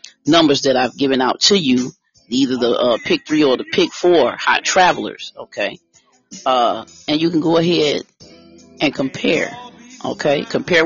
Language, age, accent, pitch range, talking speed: English, 40-59, American, 135-175 Hz, 160 wpm